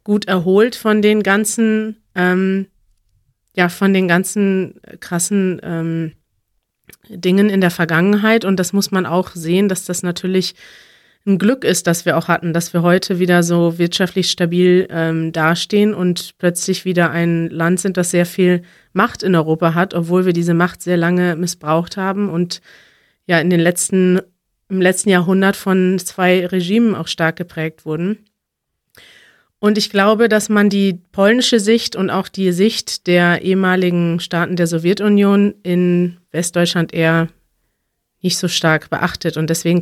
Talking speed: 155 wpm